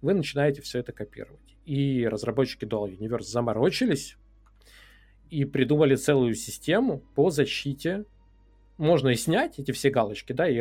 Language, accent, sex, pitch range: Russian, native, male, 115-145 Hz